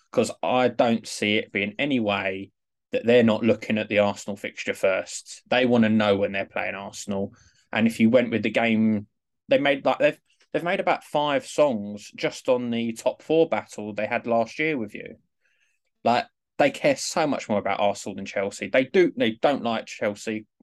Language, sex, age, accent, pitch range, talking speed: English, male, 20-39, British, 100-115 Hz, 200 wpm